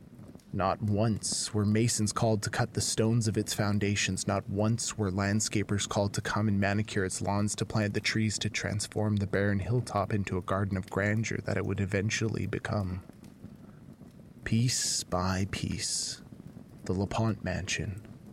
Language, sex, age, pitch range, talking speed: English, male, 20-39, 100-110 Hz, 155 wpm